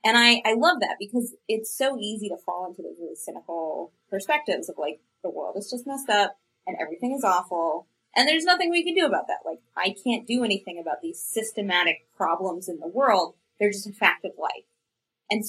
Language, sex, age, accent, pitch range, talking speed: English, female, 20-39, American, 175-240 Hz, 215 wpm